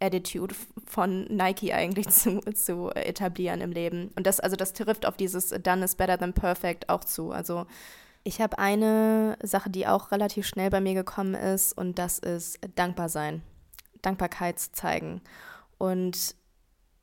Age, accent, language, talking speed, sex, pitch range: 20-39, German, German, 155 wpm, female, 175-200 Hz